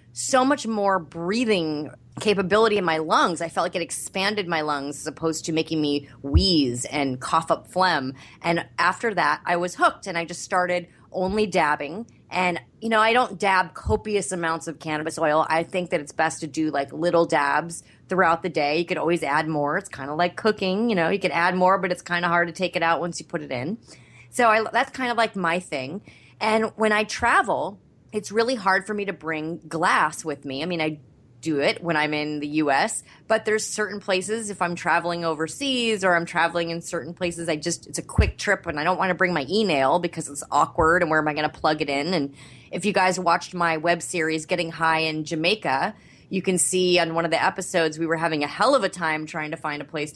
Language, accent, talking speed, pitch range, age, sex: English, American, 235 wpm, 155-190 Hz, 30-49, female